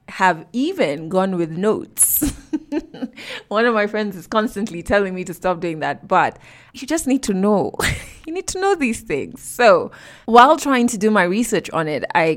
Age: 20-39